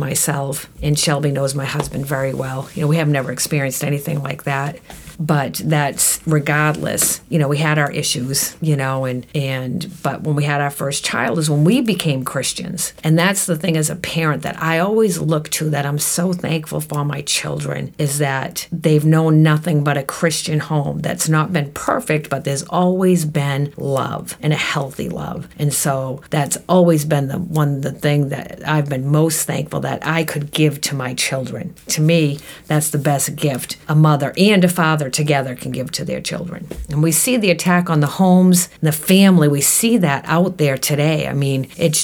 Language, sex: English, female